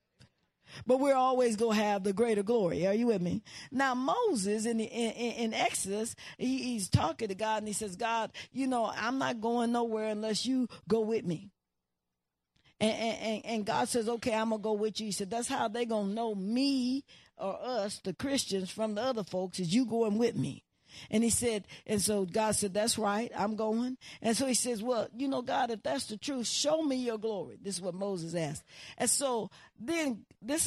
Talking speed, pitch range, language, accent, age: 215 wpm, 200-250 Hz, English, American, 50-69